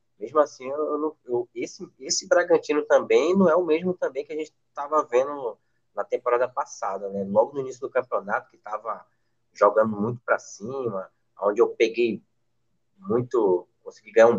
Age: 20-39